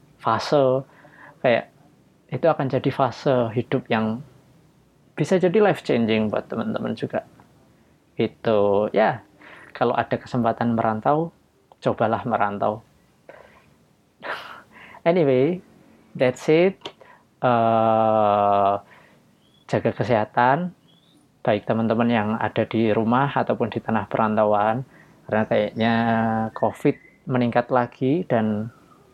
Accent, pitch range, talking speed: native, 115-140 Hz, 95 wpm